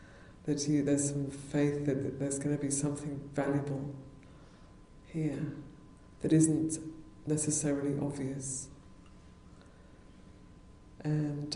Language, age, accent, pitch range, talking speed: English, 50-69, British, 140-155 Hz, 100 wpm